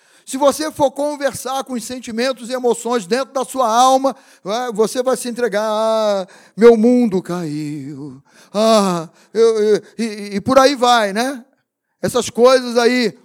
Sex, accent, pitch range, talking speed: male, Brazilian, 170-250 Hz, 150 wpm